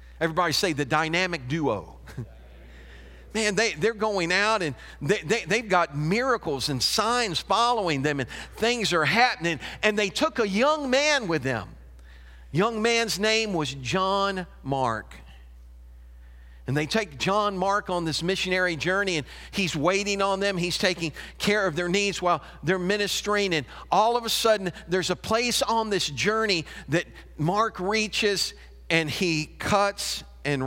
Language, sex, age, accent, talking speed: English, male, 50-69, American, 150 wpm